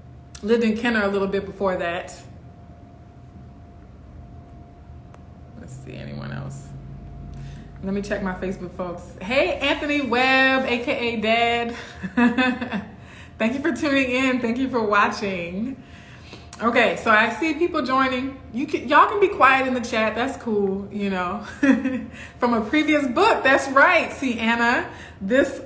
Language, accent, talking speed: English, American, 140 wpm